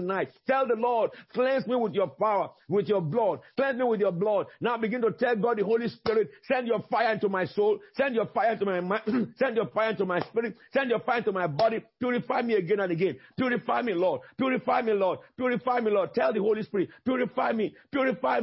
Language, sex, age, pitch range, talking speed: English, male, 50-69, 215-275 Hz, 230 wpm